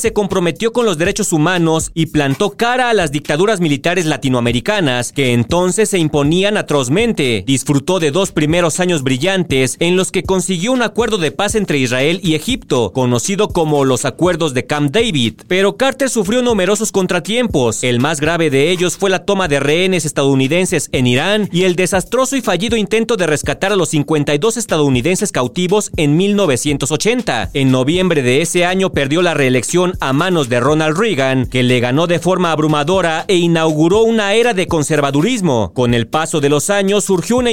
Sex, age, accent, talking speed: male, 40-59, Mexican, 175 wpm